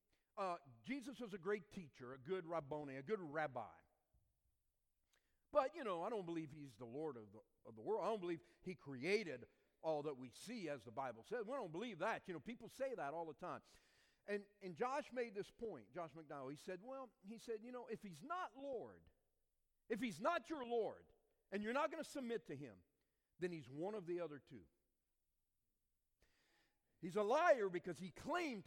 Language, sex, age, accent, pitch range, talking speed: English, male, 50-69, American, 130-210 Hz, 200 wpm